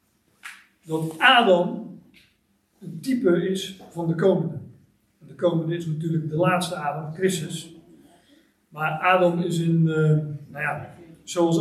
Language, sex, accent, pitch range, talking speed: Dutch, male, Dutch, 160-185 Hz, 130 wpm